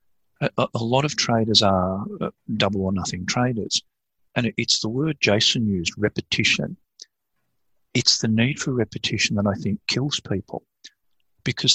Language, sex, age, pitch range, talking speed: English, male, 50-69, 100-120 Hz, 140 wpm